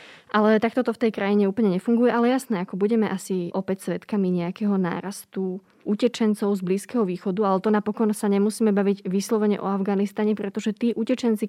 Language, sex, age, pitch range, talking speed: Slovak, female, 20-39, 185-220 Hz, 170 wpm